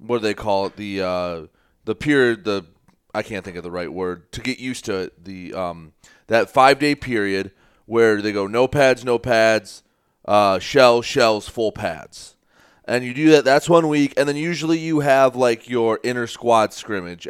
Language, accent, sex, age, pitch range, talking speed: English, American, male, 30-49, 110-145 Hz, 195 wpm